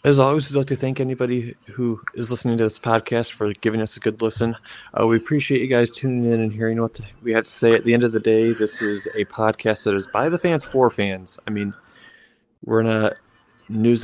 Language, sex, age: English, male, 30-49